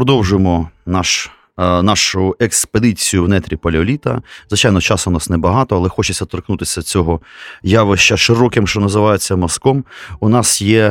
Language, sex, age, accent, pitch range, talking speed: Ukrainian, male, 30-49, native, 90-110 Hz, 130 wpm